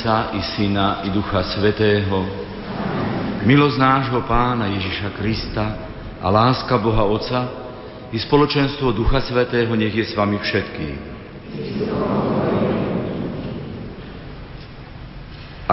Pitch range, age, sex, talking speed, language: 100-125 Hz, 50-69, male, 90 wpm, Slovak